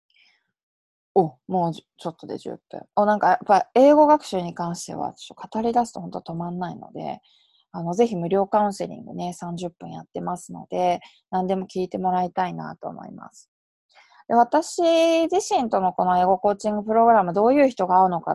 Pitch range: 175-245 Hz